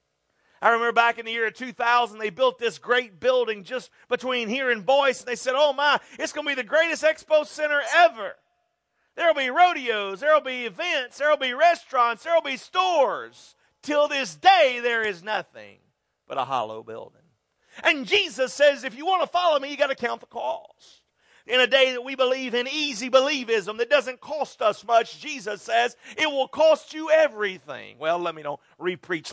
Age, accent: 40-59, American